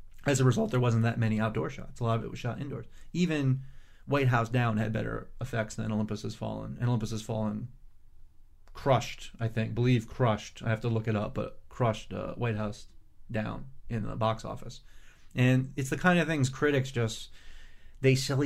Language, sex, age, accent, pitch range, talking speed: English, male, 30-49, American, 110-130 Hz, 200 wpm